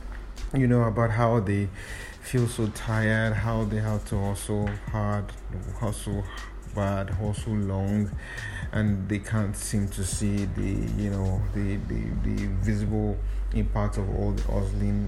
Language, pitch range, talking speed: English, 100-115 Hz, 145 wpm